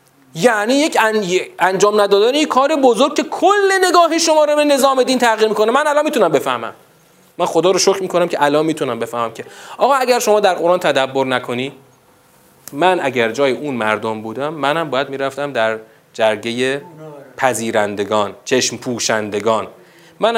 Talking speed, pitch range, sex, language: 155 wpm, 185-275 Hz, male, Persian